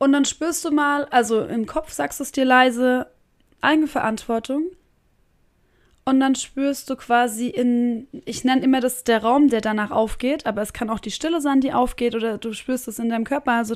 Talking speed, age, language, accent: 205 wpm, 20-39, German, German